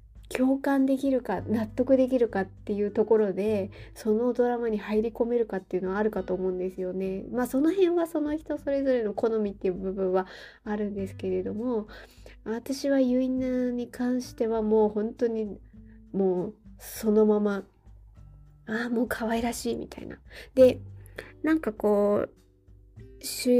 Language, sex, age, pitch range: Japanese, female, 20-39, 200-255 Hz